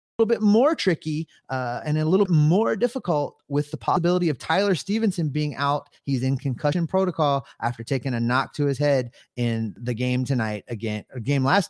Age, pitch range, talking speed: 30-49, 125-180 Hz, 190 wpm